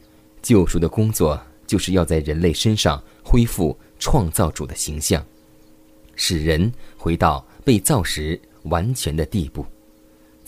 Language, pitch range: Chinese, 80-105 Hz